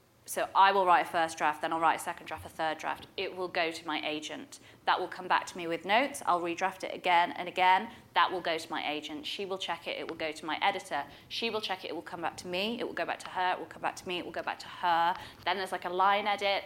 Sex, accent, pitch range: female, British, 165-195 Hz